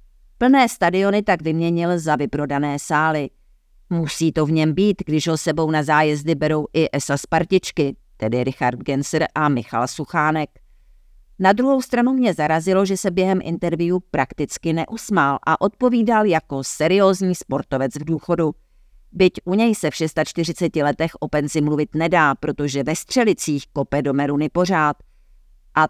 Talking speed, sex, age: 150 wpm, female, 50-69